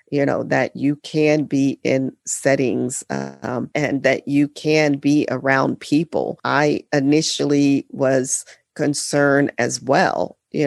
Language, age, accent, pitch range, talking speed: English, 40-59, American, 135-155 Hz, 135 wpm